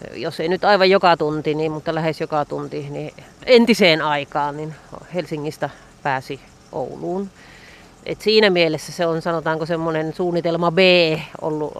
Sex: female